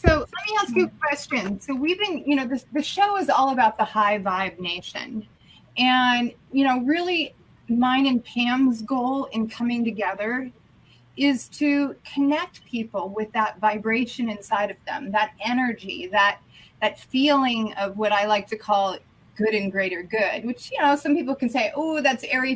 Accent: American